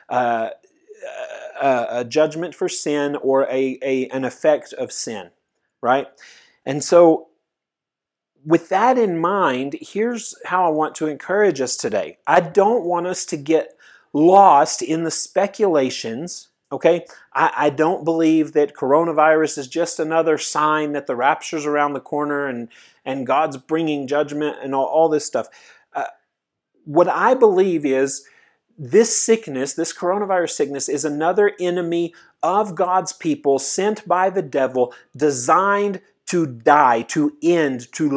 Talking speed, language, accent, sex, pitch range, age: 140 wpm, English, American, male, 145-190 Hz, 30-49